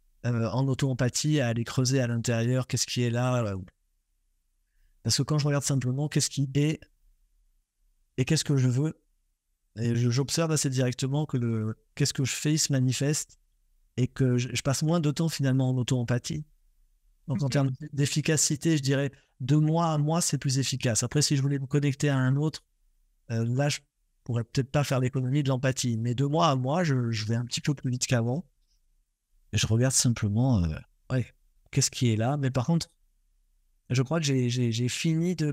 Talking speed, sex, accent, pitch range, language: 205 wpm, male, French, 120-145 Hz, French